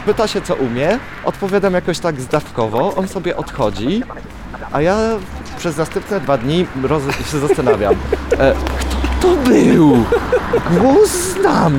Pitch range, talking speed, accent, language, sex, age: 120-175 Hz, 120 wpm, native, Polish, male, 30-49